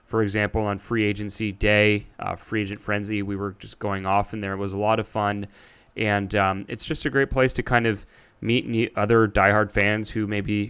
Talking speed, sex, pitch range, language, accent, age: 220 wpm, male, 100-120 Hz, English, American, 20-39